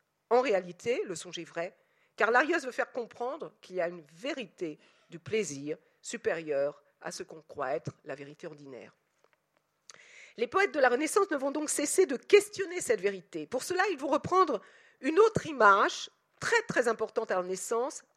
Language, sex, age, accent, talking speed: French, female, 50-69, French, 180 wpm